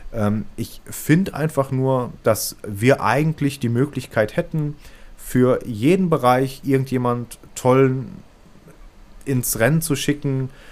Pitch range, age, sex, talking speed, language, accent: 115-160 Hz, 30-49, male, 105 wpm, German, German